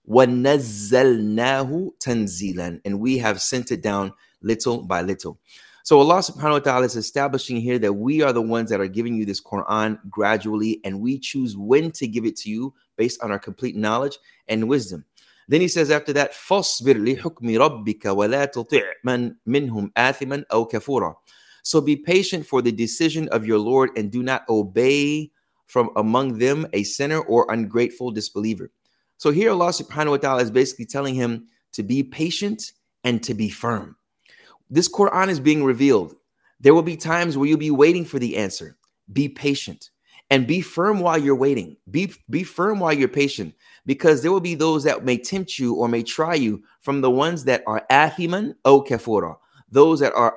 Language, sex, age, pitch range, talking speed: English, male, 30-49, 115-155 Hz, 175 wpm